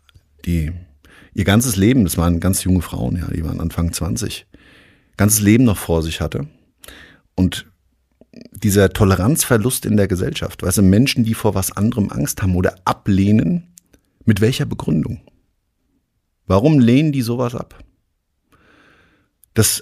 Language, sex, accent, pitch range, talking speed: German, male, German, 95-125 Hz, 140 wpm